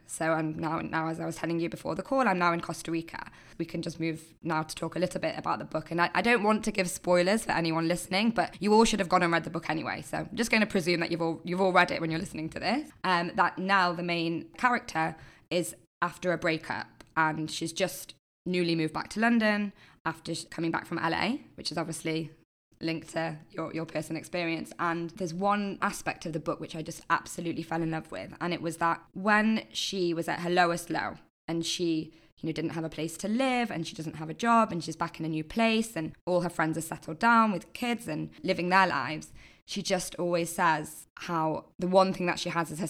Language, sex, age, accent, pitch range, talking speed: English, female, 20-39, British, 160-190 Hz, 250 wpm